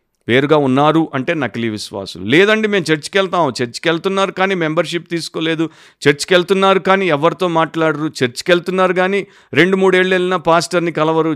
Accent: native